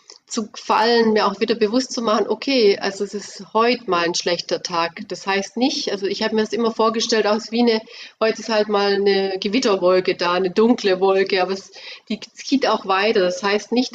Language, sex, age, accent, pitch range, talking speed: German, female, 30-49, German, 190-230 Hz, 210 wpm